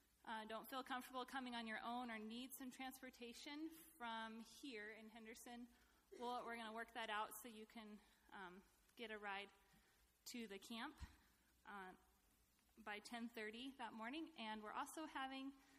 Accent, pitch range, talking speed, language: American, 210-245 Hz, 155 wpm, English